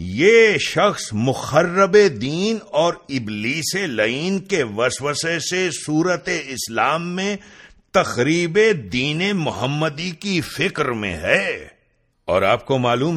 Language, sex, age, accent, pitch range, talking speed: English, male, 50-69, Indian, 130-185 Hz, 110 wpm